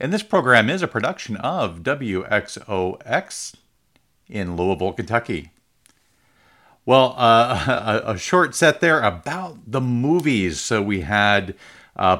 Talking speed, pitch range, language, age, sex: 125 wpm, 100-130 Hz, English, 50-69, male